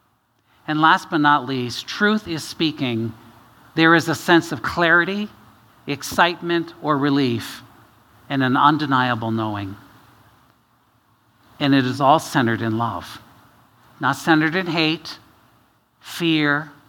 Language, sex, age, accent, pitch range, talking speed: English, male, 50-69, American, 120-160 Hz, 115 wpm